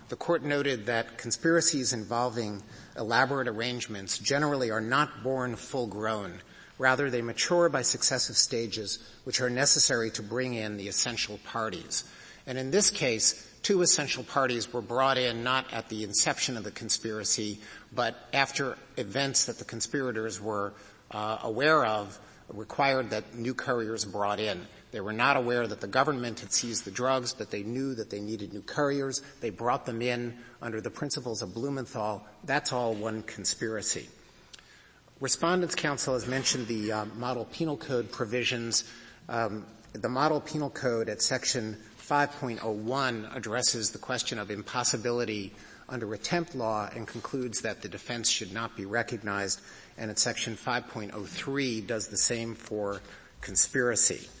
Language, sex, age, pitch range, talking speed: English, male, 50-69, 110-130 Hz, 150 wpm